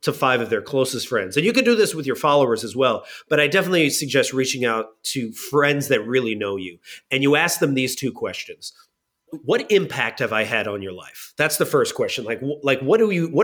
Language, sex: English, male